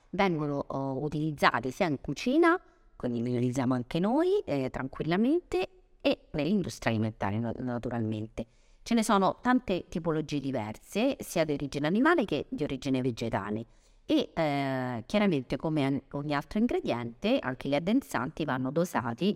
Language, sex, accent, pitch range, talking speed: Italian, female, native, 130-175 Hz, 135 wpm